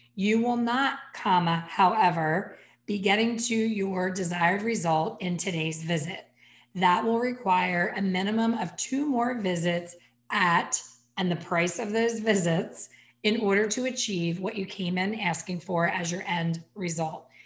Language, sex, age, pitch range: English, female, 30-49, 180-225 Hz